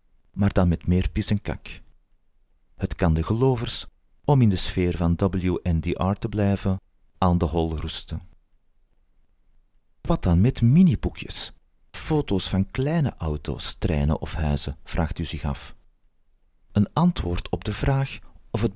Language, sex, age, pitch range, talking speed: Dutch, male, 40-59, 80-115 Hz, 145 wpm